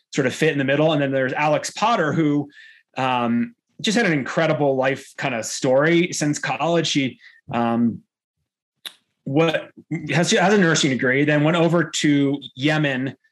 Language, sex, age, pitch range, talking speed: English, male, 30-49, 135-165 Hz, 155 wpm